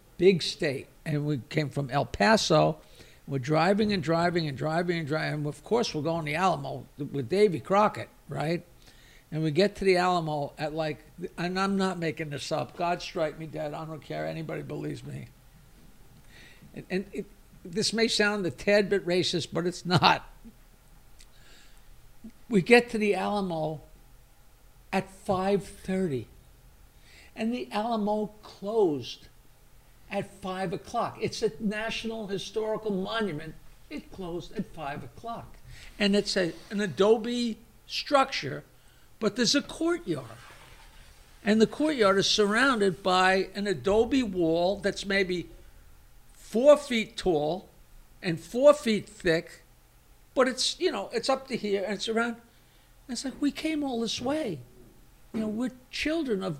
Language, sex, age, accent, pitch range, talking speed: English, male, 60-79, American, 155-220 Hz, 150 wpm